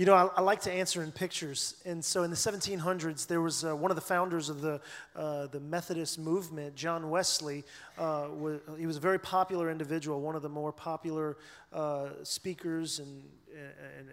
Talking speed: 195 wpm